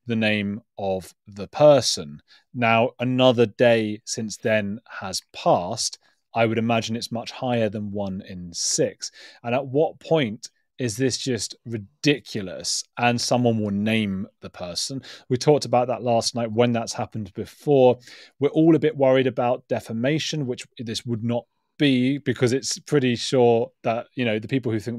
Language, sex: English, male